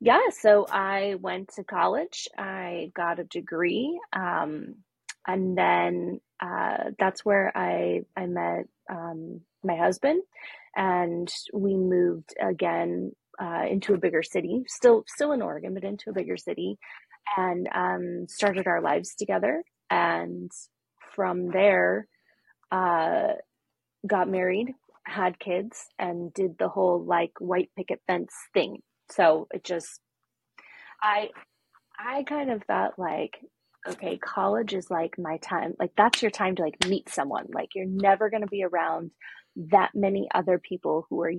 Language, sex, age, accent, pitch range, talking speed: English, female, 20-39, American, 170-200 Hz, 145 wpm